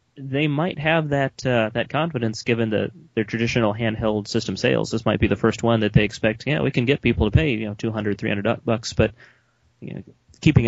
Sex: male